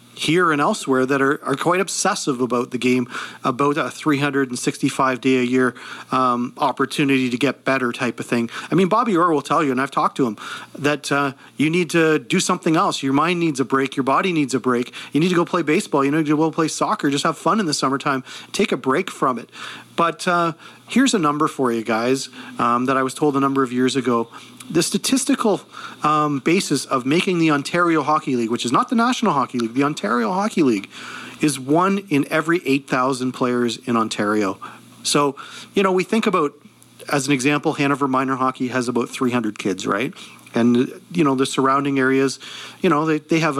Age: 40-59